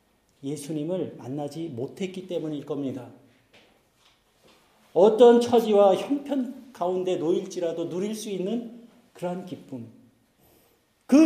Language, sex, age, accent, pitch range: Korean, male, 40-59, native, 160-235 Hz